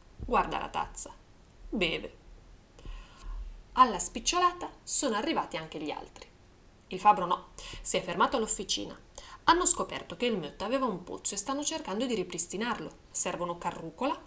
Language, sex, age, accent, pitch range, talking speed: Italian, female, 30-49, native, 175-255 Hz, 140 wpm